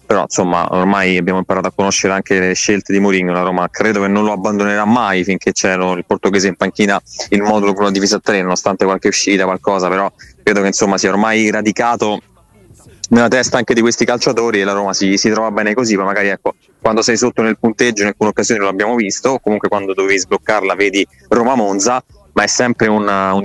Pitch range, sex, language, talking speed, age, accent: 100-115 Hz, male, Italian, 210 wpm, 20-39, native